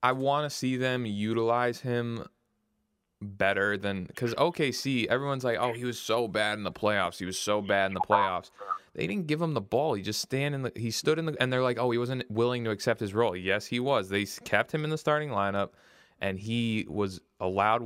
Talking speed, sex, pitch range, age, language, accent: 215 wpm, male, 100-130 Hz, 20-39, English, American